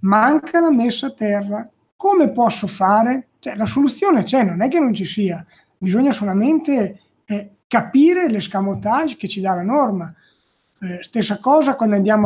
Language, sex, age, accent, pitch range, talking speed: Italian, male, 30-49, native, 190-245 Hz, 165 wpm